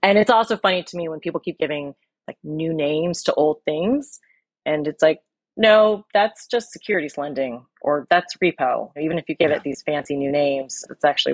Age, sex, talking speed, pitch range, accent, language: 30-49, female, 200 wpm, 140-185 Hz, American, English